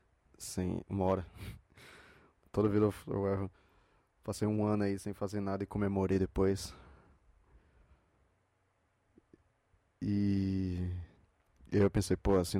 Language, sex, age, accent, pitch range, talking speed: Portuguese, male, 20-39, Brazilian, 95-110 Hz, 100 wpm